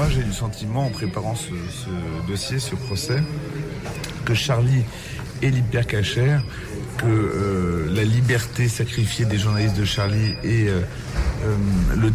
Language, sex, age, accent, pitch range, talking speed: French, male, 40-59, French, 105-125 Hz, 140 wpm